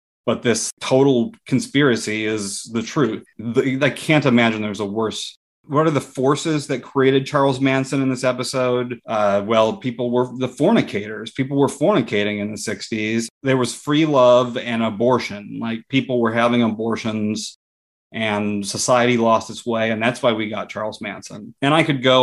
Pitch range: 110-130 Hz